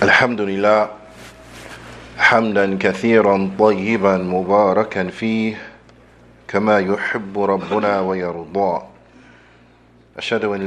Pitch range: 95-110 Hz